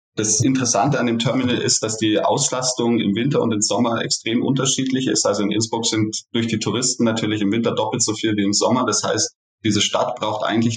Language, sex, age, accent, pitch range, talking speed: German, male, 20-39, German, 110-130 Hz, 215 wpm